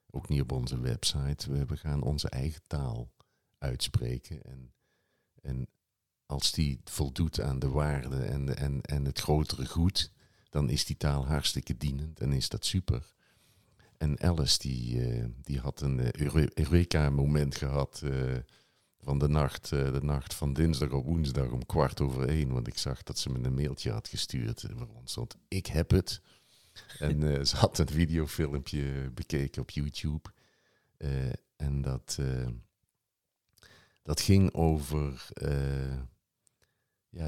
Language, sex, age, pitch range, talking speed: Dutch, male, 50-69, 70-80 Hz, 155 wpm